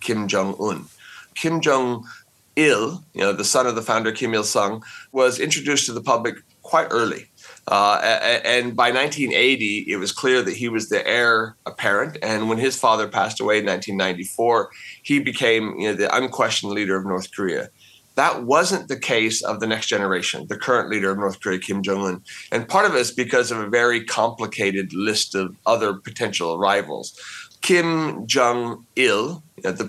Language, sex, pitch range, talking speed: English, male, 105-130 Hz, 180 wpm